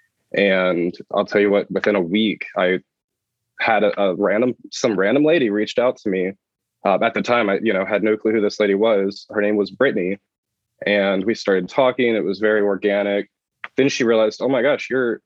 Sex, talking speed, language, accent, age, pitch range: male, 210 wpm, English, American, 20-39, 95-110 Hz